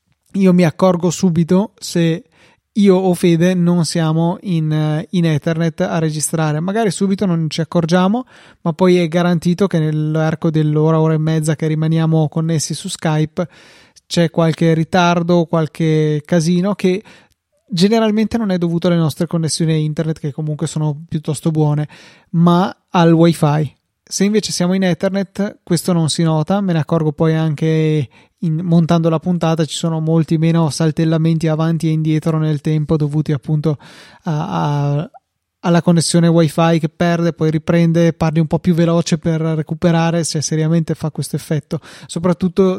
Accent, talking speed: native, 155 wpm